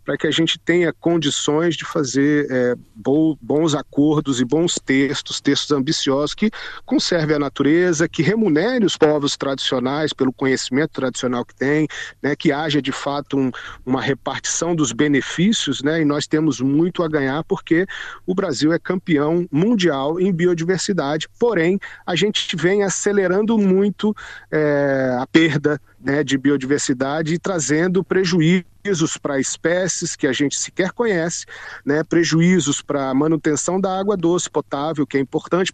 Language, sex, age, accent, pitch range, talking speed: Portuguese, male, 40-59, Brazilian, 140-175 Hz, 150 wpm